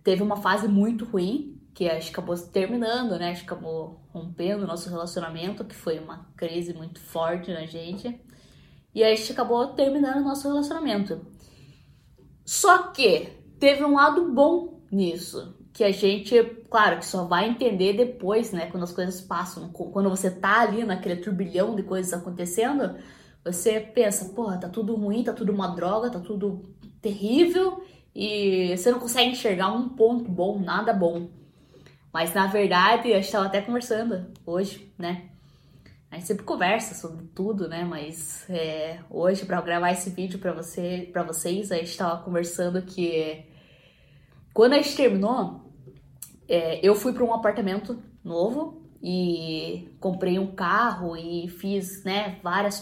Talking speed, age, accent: 160 wpm, 10-29, Brazilian